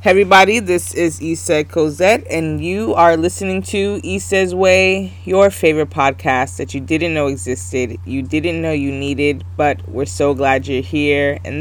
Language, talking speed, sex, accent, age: English, 170 wpm, female, American, 20-39